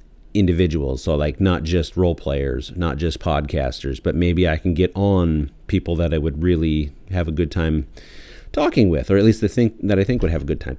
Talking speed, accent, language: 220 wpm, American, English